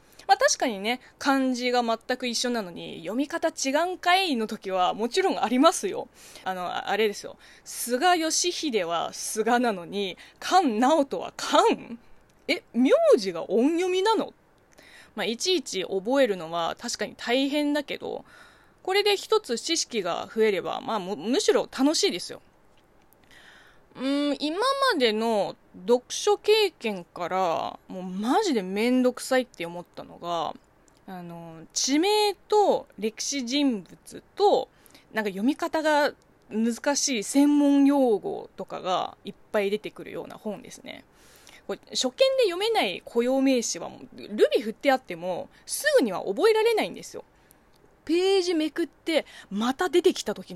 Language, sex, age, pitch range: Japanese, female, 20-39, 220-350 Hz